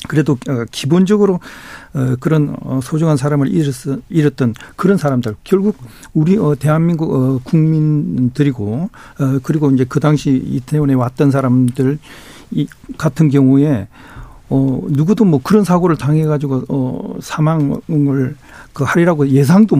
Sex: male